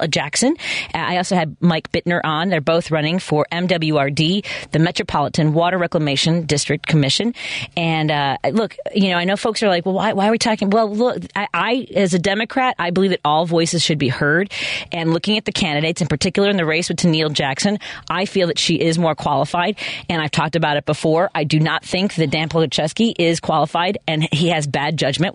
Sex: female